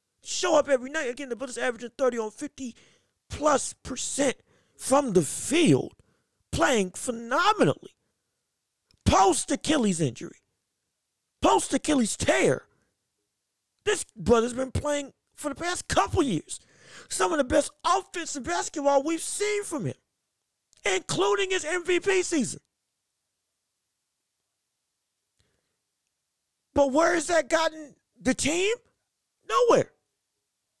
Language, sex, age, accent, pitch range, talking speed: English, male, 40-59, American, 250-340 Hz, 100 wpm